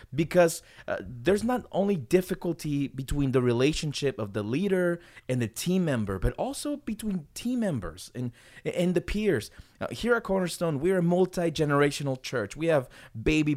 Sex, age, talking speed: male, 30-49, 160 wpm